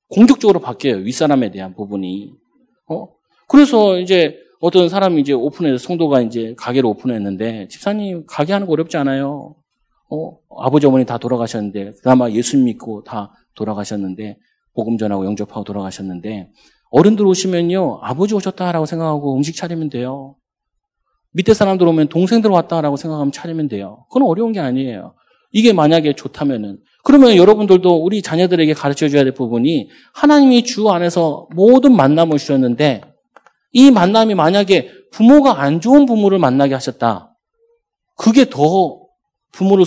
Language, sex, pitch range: Korean, male, 130-205 Hz